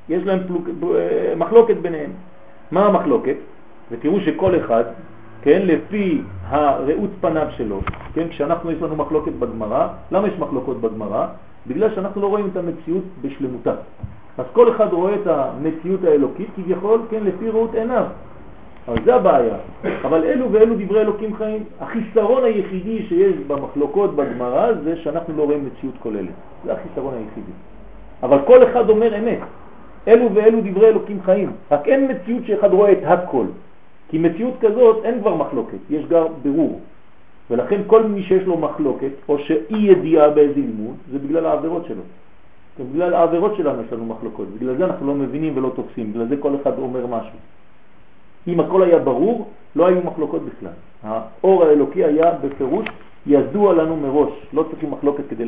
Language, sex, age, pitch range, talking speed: French, male, 40-59, 145-215 Hz, 150 wpm